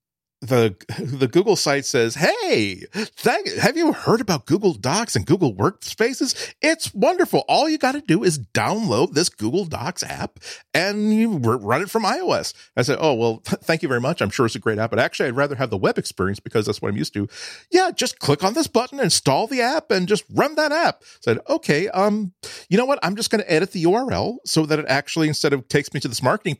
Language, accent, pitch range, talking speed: English, American, 120-190 Hz, 230 wpm